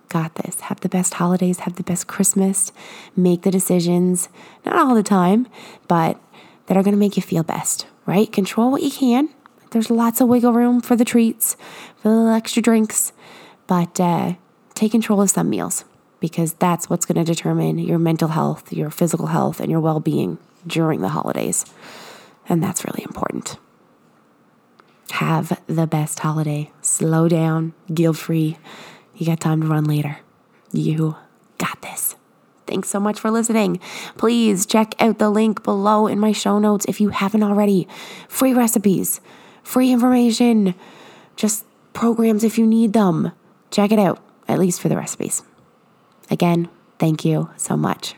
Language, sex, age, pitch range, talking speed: English, female, 20-39, 170-225 Hz, 165 wpm